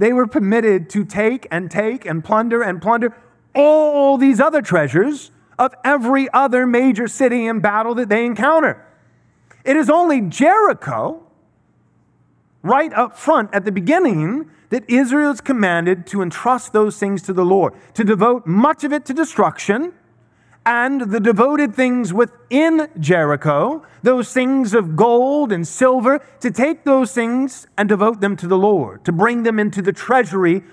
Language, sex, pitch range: English, male, 200-265 Hz